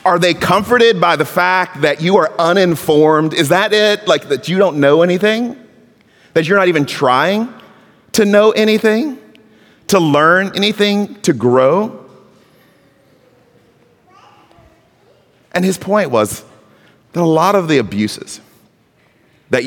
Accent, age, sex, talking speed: American, 30-49, male, 130 wpm